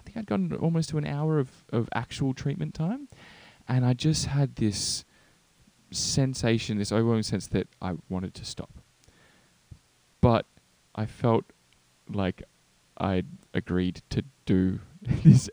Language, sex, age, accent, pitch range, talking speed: English, male, 20-39, Australian, 90-115 Hz, 130 wpm